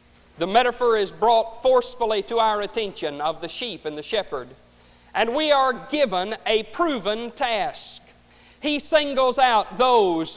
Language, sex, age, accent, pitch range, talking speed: English, male, 50-69, American, 185-275 Hz, 145 wpm